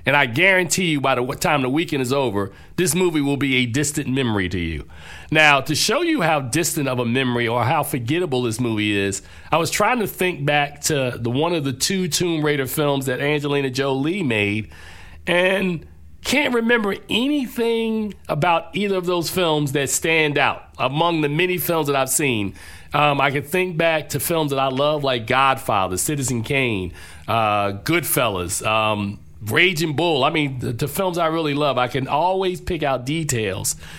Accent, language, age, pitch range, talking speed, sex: American, English, 40-59, 115-180 Hz, 185 wpm, male